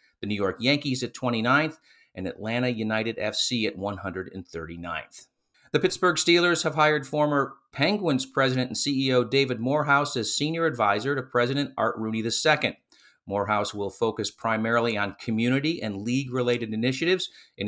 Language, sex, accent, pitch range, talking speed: English, male, American, 105-135 Hz, 145 wpm